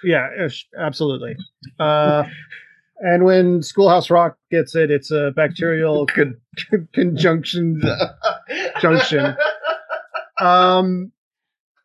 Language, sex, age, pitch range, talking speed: English, male, 30-49, 170-240 Hz, 95 wpm